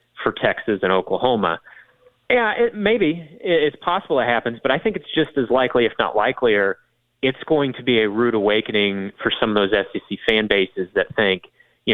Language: English